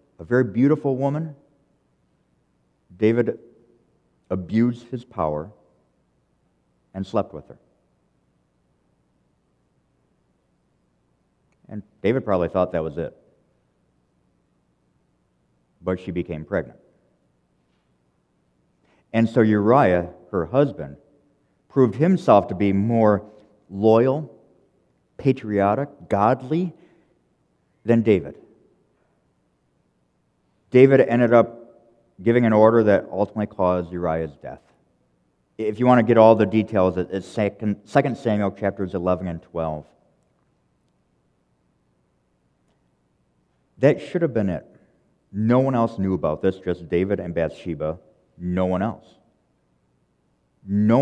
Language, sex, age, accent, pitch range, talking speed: English, male, 50-69, American, 75-115 Hz, 100 wpm